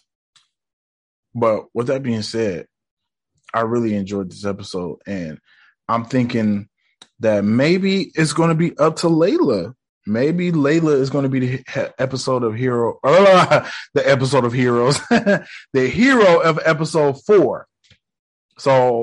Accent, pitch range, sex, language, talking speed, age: American, 120-160 Hz, male, English, 135 wpm, 20-39